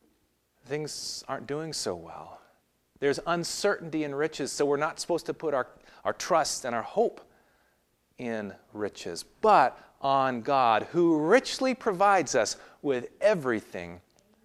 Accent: American